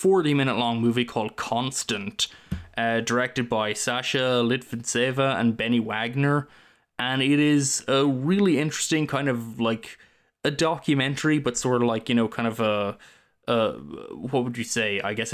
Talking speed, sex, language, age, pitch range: 155 wpm, male, English, 20-39, 115-130 Hz